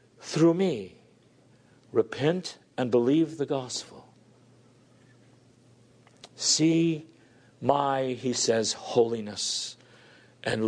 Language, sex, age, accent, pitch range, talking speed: English, male, 50-69, American, 120-185 Hz, 75 wpm